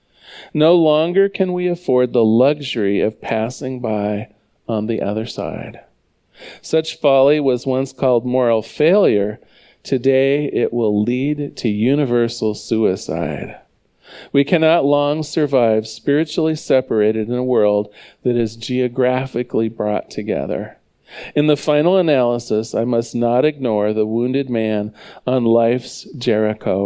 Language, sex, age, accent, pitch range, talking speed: English, male, 40-59, American, 110-140 Hz, 125 wpm